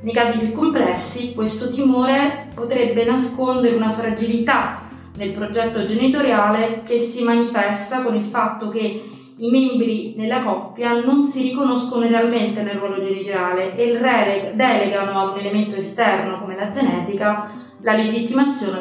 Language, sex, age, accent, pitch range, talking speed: Italian, female, 20-39, native, 200-250 Hz, 135 wpm